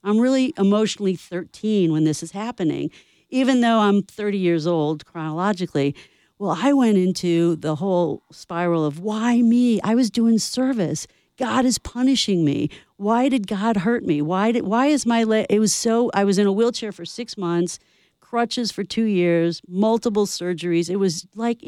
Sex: female